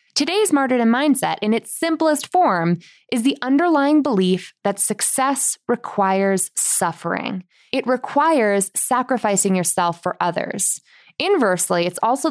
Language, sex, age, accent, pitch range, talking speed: English, female, 20-39, American, 180-245 Hz, 115 wpm